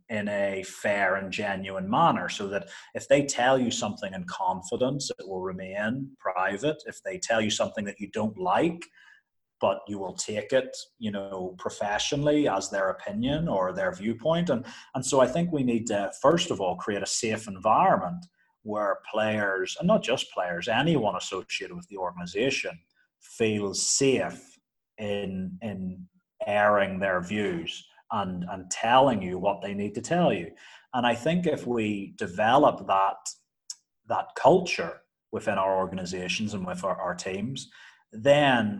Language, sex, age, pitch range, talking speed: English, male, 30-49, 95-145 Hz, 155 wpm